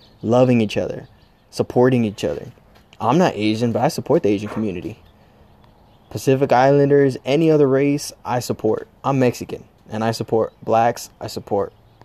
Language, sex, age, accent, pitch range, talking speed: English, male, 20-39, American, 105-130 Hz, 150 wpm